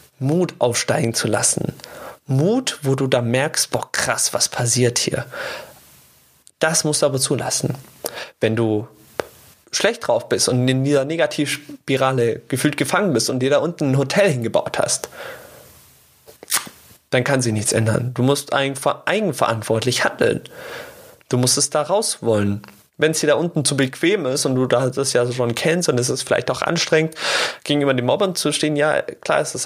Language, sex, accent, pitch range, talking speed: German, male, German, 120-150 Hz, 170 wpm